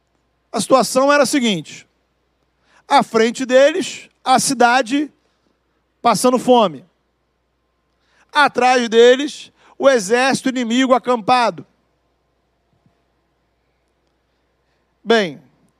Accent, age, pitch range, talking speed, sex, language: Brazilian, 50-69, 215-260 Hz, 70 wpm, male, Portuguese